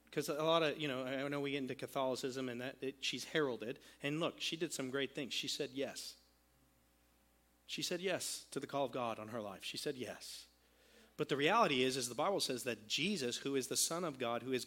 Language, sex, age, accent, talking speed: English, male, 40-59, American, 235 wpm